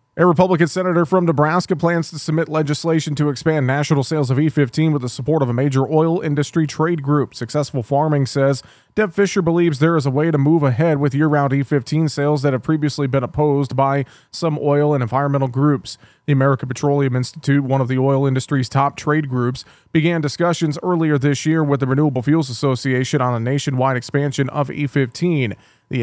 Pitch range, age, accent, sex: 130-155 Hz, 30-49, American, male